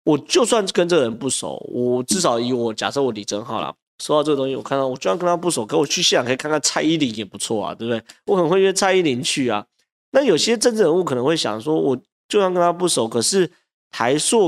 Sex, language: male, Chinese